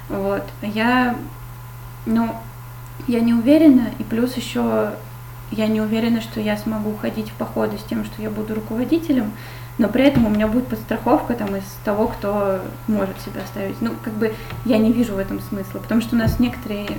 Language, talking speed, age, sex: Russian, 185 wpm, 20-39, female